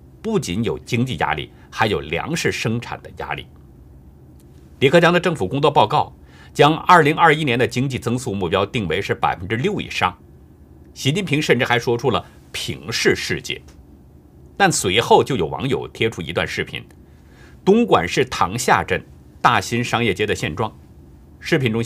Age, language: 50-69, Chinese